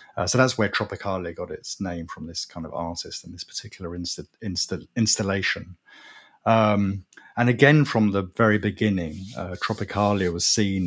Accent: British